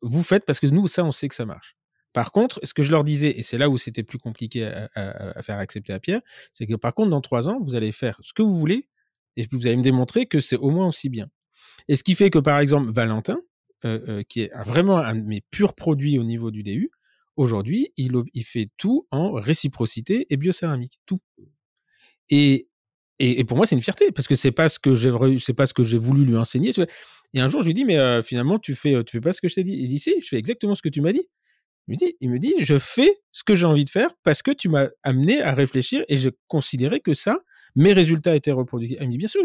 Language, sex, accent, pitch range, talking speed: French, male, French, 120-165 Hz, 270 wpm